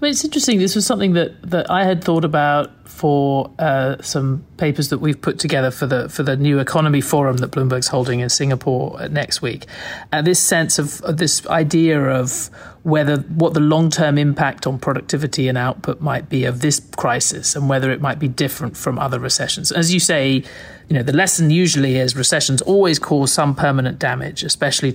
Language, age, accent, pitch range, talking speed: English, 40-59, British, 135-165 Hz, 200 wpm